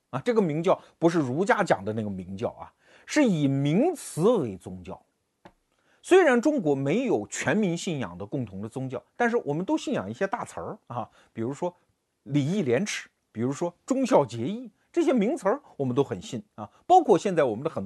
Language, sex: Chinese, male